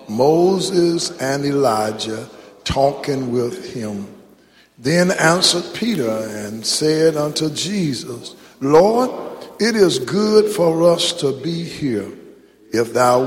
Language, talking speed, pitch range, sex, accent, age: English, 110 wpm, 120-175 Hz, male, American, 60-79